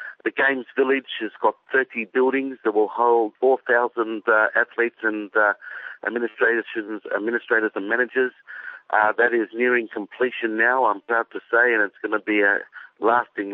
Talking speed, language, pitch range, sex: 160 wpm, English, 105-130 Hz, male